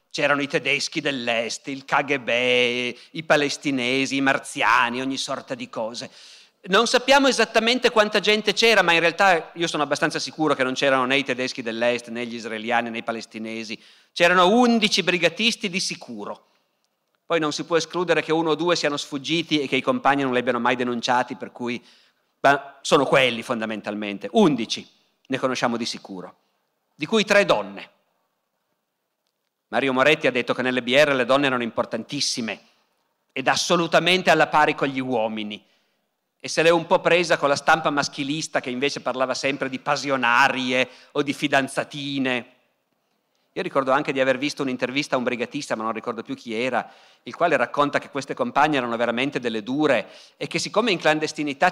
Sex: male